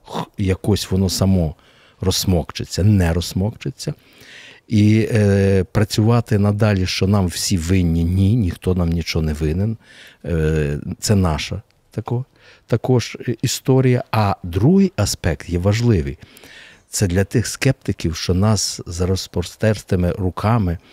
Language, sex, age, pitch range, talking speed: Ukrainian, male, 50-69, 85-110 Hz, 120 wpm